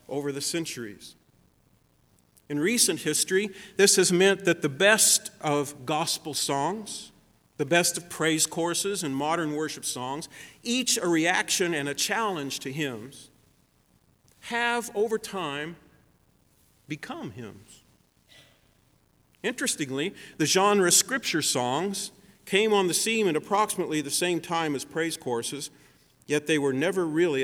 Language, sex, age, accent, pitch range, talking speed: English, male, 50-69, American, 125-170 Hz, 130 wpm